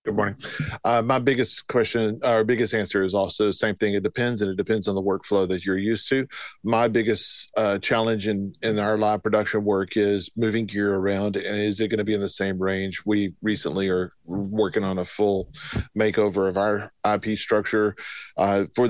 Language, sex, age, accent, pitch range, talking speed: English, male, 40-59, American, 100-110 Hz, 210 wpm